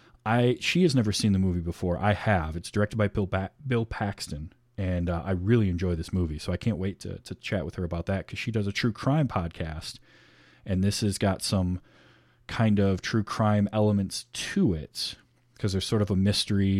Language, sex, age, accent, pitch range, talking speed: English, male, 20-39, American, 95-115 Hz, 215 wpm